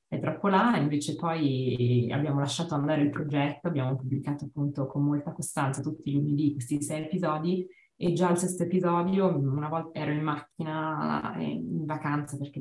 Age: 20-39